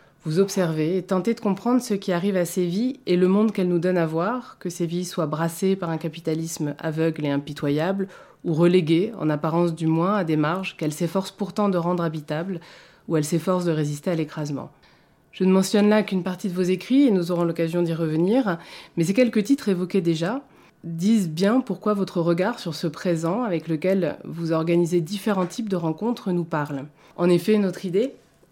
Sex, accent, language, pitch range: female, French, French, 160-190 Hz